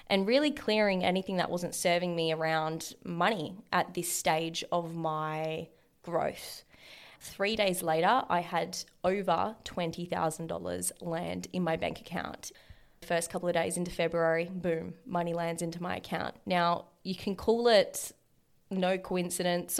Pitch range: 165-195 Hz